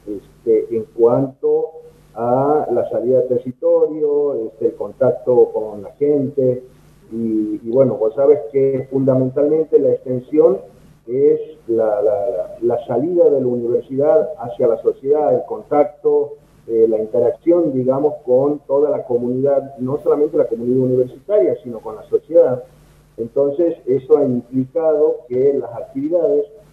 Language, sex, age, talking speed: Spanish, male, 50-69, 130 wpm